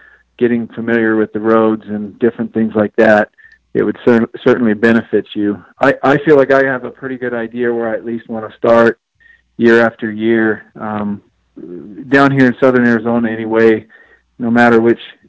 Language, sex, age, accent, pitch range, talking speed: English, male, 40-59, American, 110-125 Hz, 180 wpm